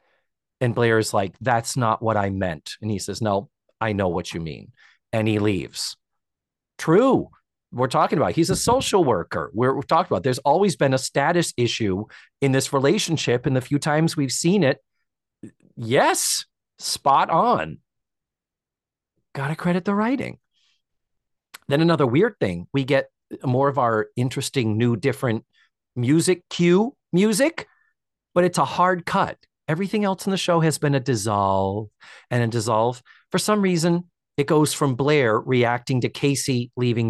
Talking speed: 165 wpm